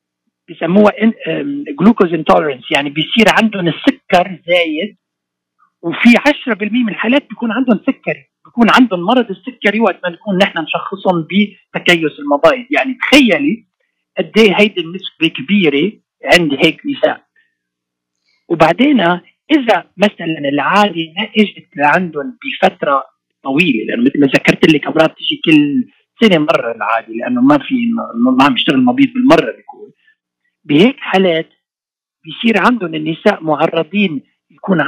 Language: Arabic